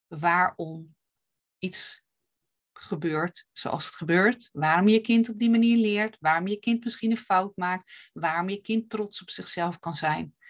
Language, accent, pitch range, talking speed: Dutch, Dutch, 180-230 Hz, 160 wpm